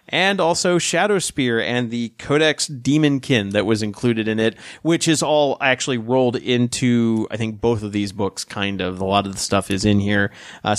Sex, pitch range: male, 110-145 Hz